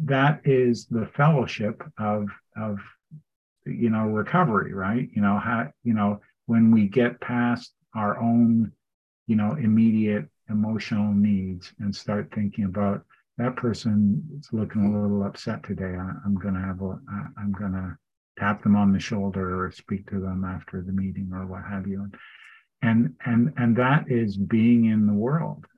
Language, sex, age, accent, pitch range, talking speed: English, male, 50-69, American, 100-120 Hz, 170 wpm